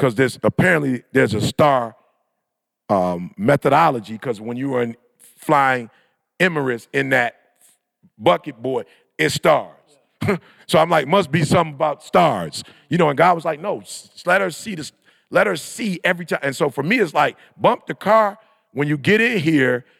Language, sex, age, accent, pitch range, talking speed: English, male, 40-59, American, 125-160 Hz, 175 wpm